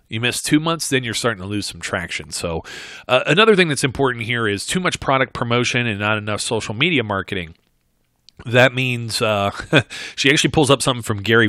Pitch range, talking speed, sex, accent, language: 105-130 Hz, 205 wpm, male, American, English